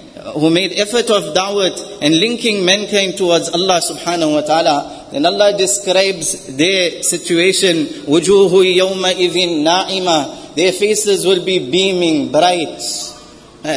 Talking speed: 115 wpm